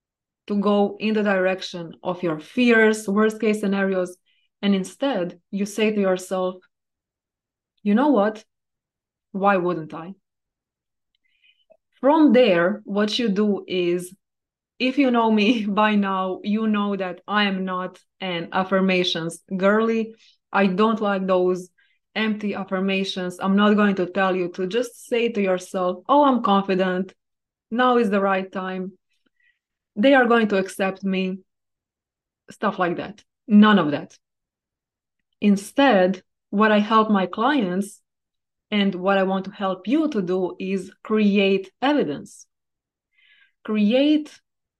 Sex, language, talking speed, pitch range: female, English, 135 wpm, 185-225 Hz